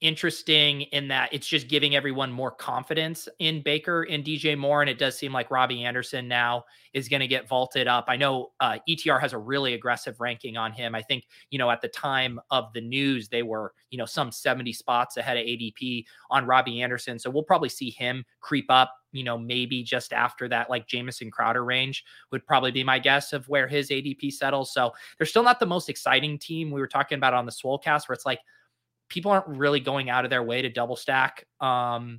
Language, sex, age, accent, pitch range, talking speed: English, male, 20-39, American, 125-145 Hz, 220 wpm